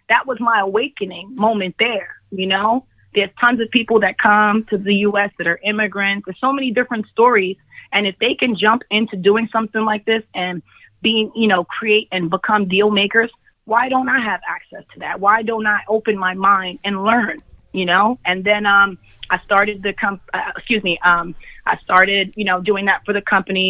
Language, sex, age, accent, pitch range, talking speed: English, female, 20-39, American, 190-215 Hz, 210 wpm